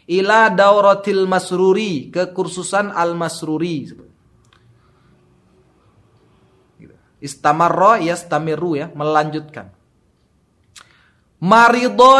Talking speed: 65 wpm